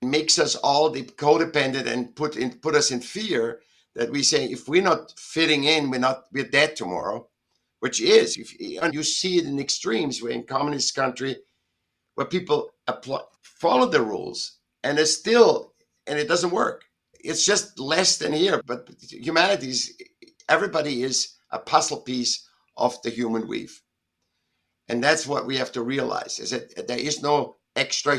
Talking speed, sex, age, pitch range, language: 170 wpm, male, 60-79, 125-170 Hz, English